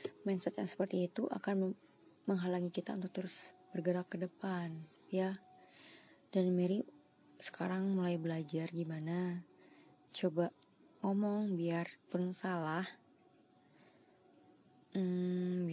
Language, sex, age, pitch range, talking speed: Indonesian, female, 20-39, 180-200 Hz, 90 wpm